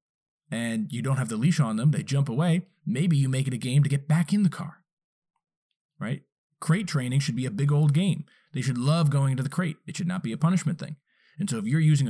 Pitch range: 135-180 Hz